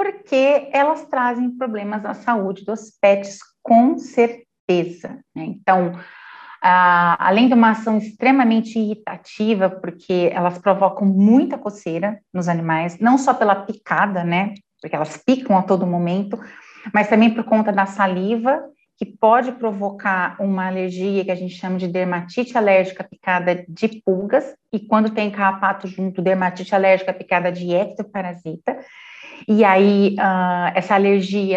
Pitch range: 185-225 Hz